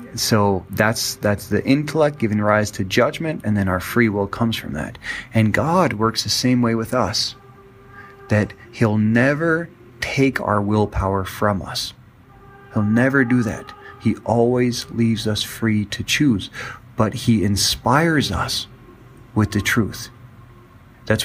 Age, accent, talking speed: 30-49, American, 145 wpm